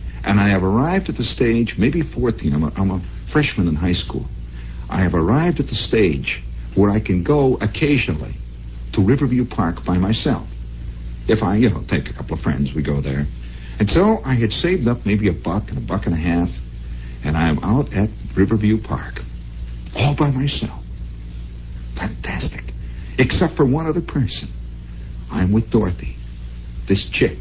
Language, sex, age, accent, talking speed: English, male, 60-79, American, 175 wpm